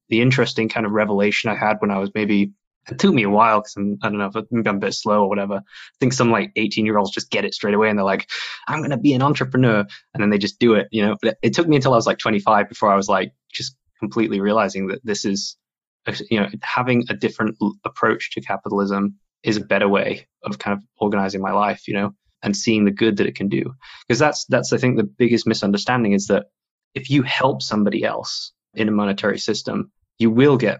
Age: 20-39